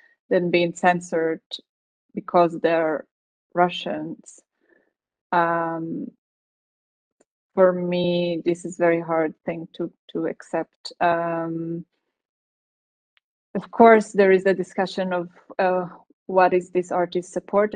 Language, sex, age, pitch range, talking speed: Italian, female, 20-39, 170-185 Hz, 110 wpm